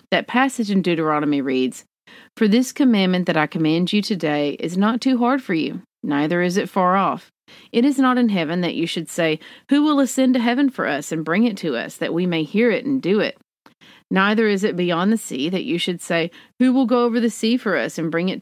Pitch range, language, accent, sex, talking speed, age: 165-240 Hz, English, American, female, 240 wpm, 40-59